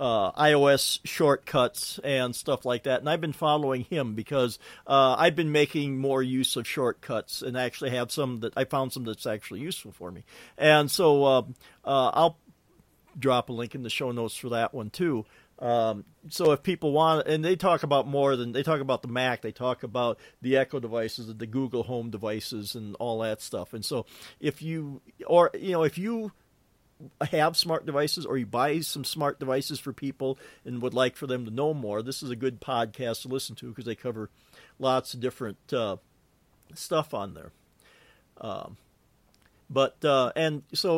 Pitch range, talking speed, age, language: 120-150 Hz, 195 wpm, 50-69, English